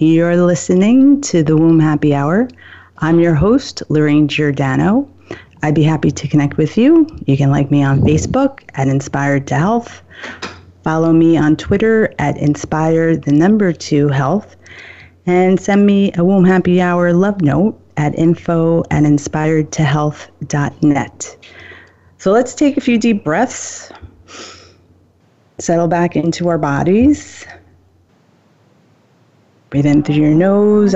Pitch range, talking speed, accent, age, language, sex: 145-185 Hz, 125 wpm, American, 30-49, English, female